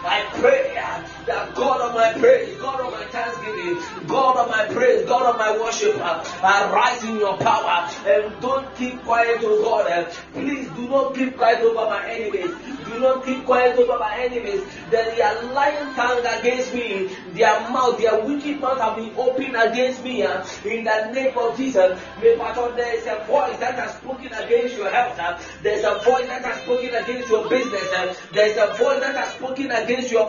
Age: 30-49